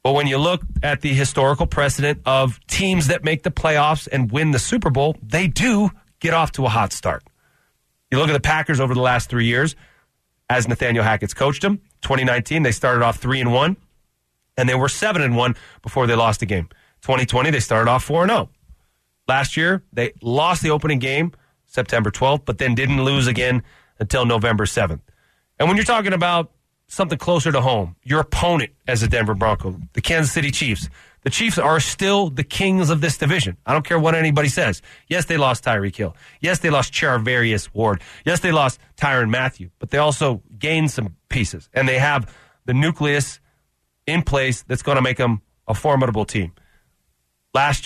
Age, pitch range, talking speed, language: 30-49, 115-155 Hz, 190 wpm, English